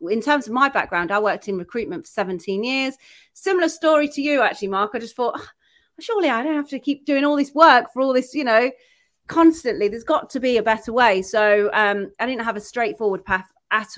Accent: British